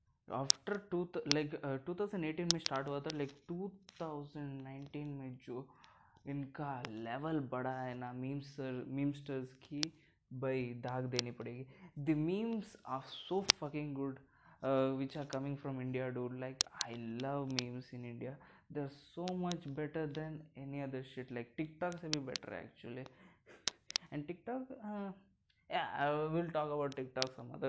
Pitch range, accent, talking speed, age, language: 130-160 Hz, Indian, 150 wpm, 20-39, English